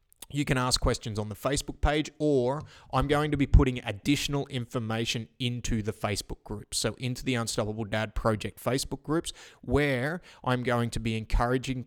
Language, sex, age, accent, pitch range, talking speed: English, male, 20-39, Australian, 110-130 Hz, 170 wpm